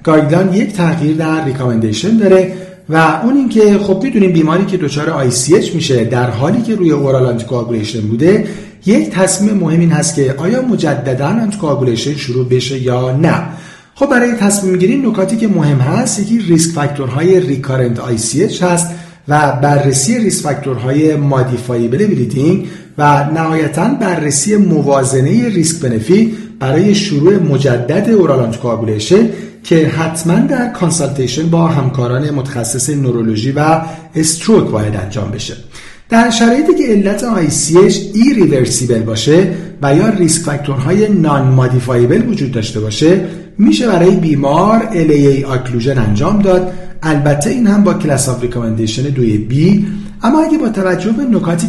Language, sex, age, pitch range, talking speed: Persian, male, 40-59, 135-195 Hz, 135 wpm